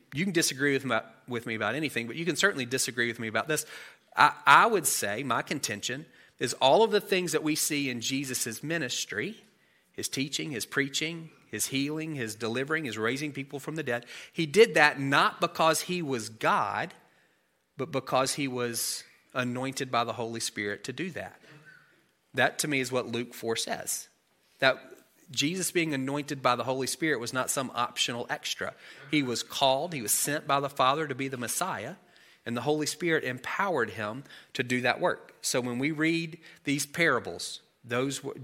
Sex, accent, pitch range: male, American, 115-150 Hz